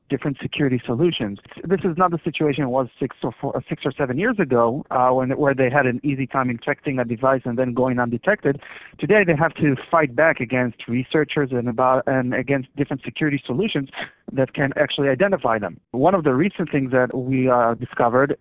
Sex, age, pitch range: male, 40-59, 125-155 Hz